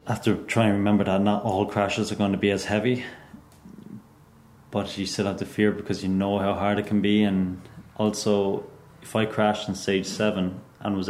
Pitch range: 95-105 Hz